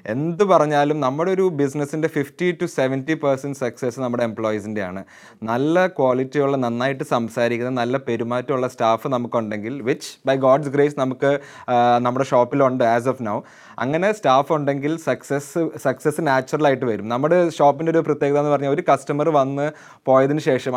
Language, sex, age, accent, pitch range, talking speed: Malayalam, male, 20-39, native, 135-165 Hz, 135 wpm